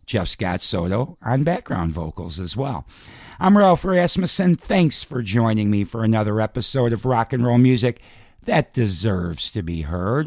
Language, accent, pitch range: English, American, 105-130 Hz